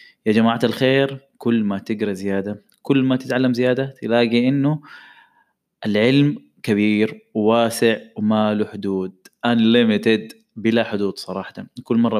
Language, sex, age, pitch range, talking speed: Arabic, male, 20-39, 105-130 Hz, 115 wpm